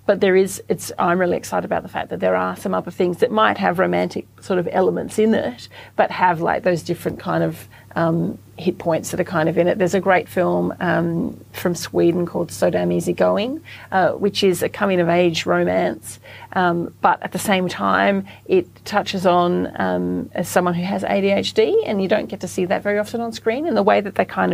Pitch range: 155-195 Hz